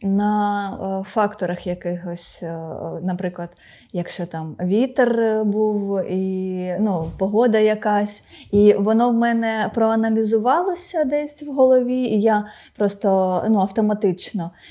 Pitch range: 185-230 Hz